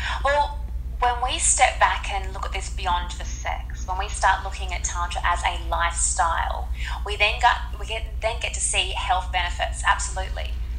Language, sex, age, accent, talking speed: English, female, 20-39, Australian, 165 wpm